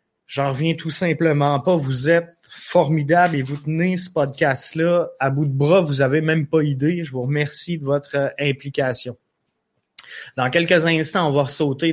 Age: 20-39